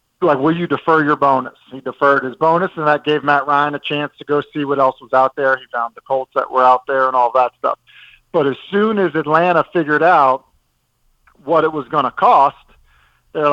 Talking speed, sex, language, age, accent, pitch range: 225 wpm, male, English, 50-69, American, 130-160 Hz